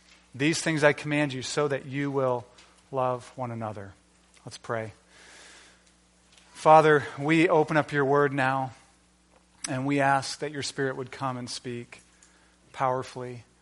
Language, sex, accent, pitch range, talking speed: English, male, American, 110-150 Hz, 140 wpm